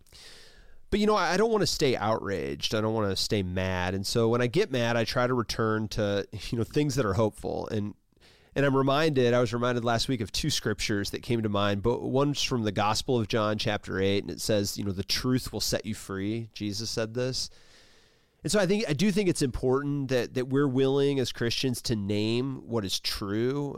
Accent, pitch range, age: American, 105-130 Hz, 30-49